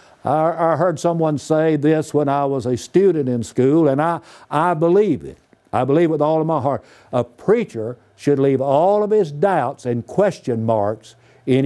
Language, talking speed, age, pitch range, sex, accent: English, 190 wpm, 60-79, 125-170 Hz, male, American